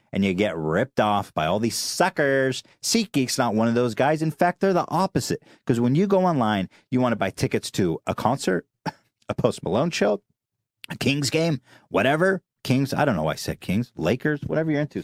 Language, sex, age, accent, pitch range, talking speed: English, male, 30-49, American, 110-150 Hz, 215 wpm